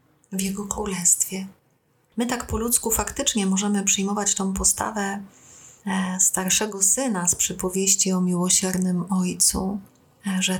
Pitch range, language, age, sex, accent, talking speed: 180-200 Hz, Polish, 30-49, female, native, 115 wpm